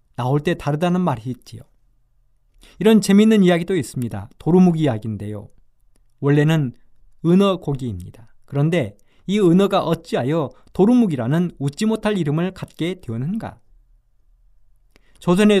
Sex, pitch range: male, 125-190 Hz